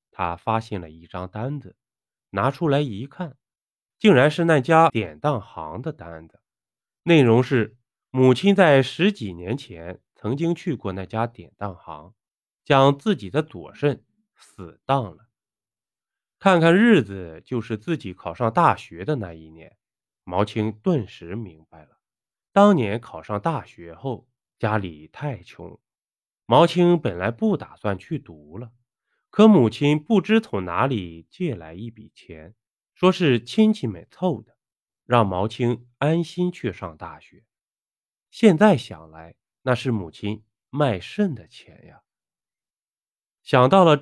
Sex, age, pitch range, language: male, 20-39, 100-165 Hz, Chinese